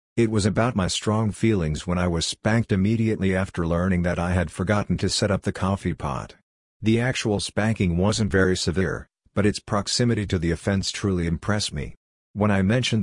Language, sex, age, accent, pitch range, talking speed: English, male, 50-69, American, 90-105 Hz, 190 wpm